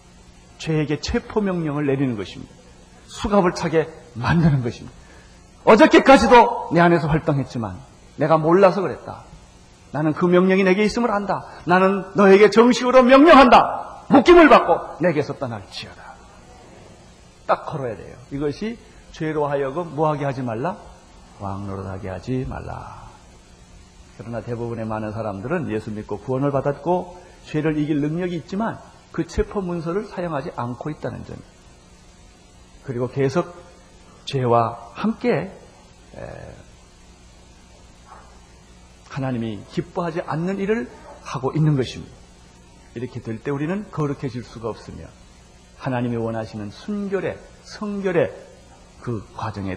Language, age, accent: Korean, 40-59, native